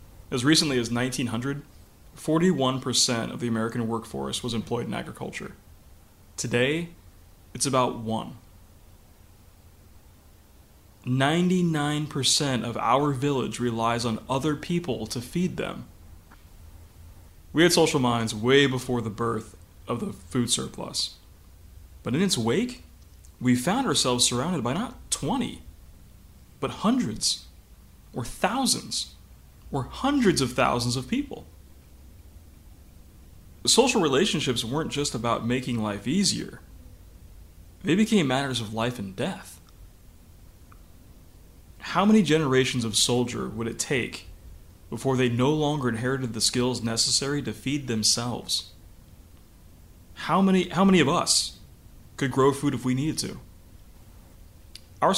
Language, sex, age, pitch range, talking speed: English, male, 20-39, 90-130 Hz, 115 wpm